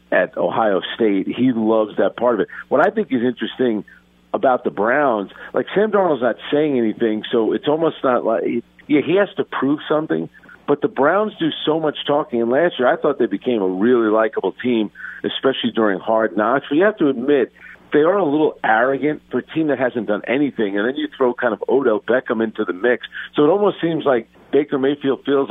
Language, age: English, 50-69